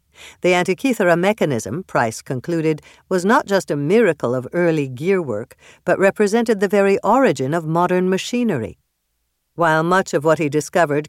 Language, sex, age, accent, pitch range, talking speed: English, female, 60-79, American, 140-190 Hz, 150 wpm